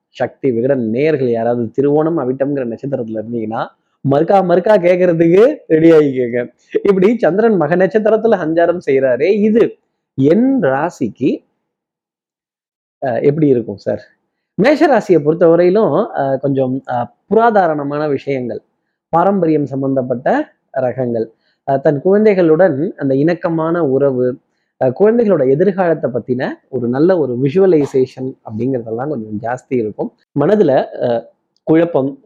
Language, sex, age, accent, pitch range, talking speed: Tamil, male, 20-39, native, 130-180 Hz, 100 wpm